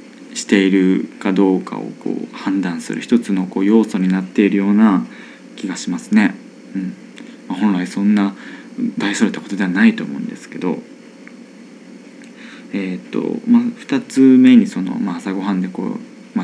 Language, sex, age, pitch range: Japanese, male, 20-39, 155-255 Hz